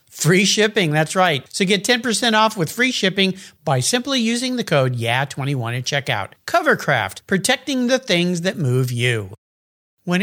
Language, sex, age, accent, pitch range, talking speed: English, male, 50-69, American, 150-225 Hz, 165 wpm